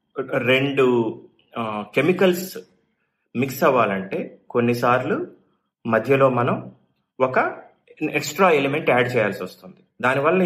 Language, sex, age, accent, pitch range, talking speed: Telugu, male, 30-49, native, 105-155 Hz, 80 wpm